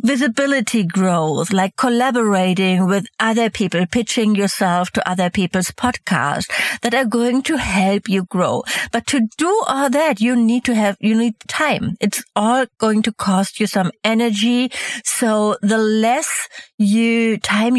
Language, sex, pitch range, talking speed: English, female, 200-250 Hz, 150 wpm